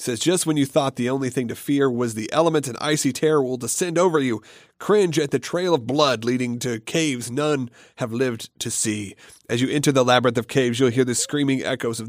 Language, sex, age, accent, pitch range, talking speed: English, male, 40-59, American, 120-150 Hz, 235 wpm